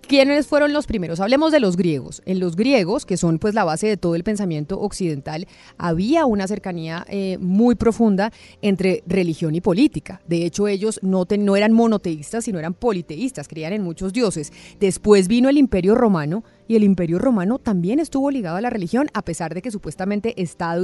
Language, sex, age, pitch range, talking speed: Spanish, female, 30-49, 185-255 Hz, 195 wpm